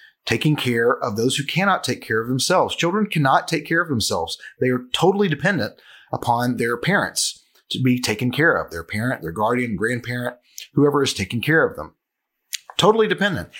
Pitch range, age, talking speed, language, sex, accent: 120-170 Hz, 30-49, 180 wpm, English, male, American